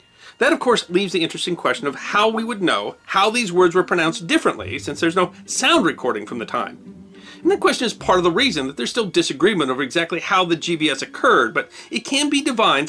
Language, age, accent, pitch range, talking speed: English, 40-59, American, 145-235 Hz, 230 wpm